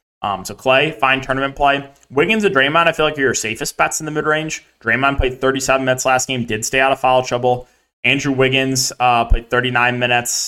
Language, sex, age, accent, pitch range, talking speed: English, male, 20-39, American, 120-150 Hz, 210 wpm